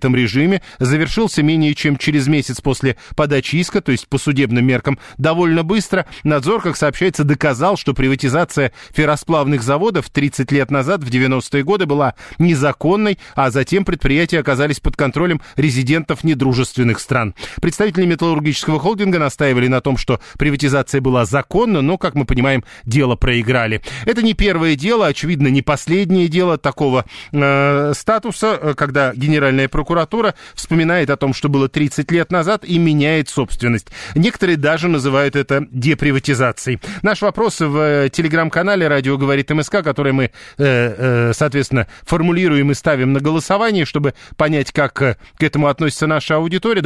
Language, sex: Russian, male